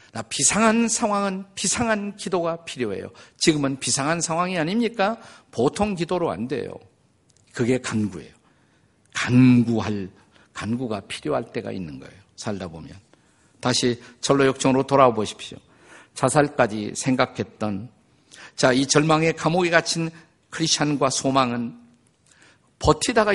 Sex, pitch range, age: male, 120-175 Hz, 50-69